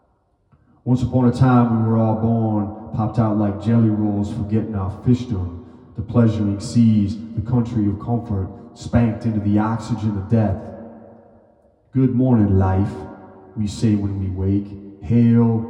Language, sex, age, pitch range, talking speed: English, male, 30-49, 100-115 Hz, 145 wpm